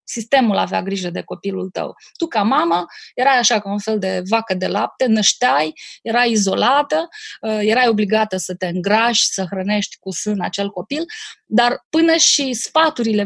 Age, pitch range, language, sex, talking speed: 20-39, 190-240 Hz, Romanian, female, 165 wpm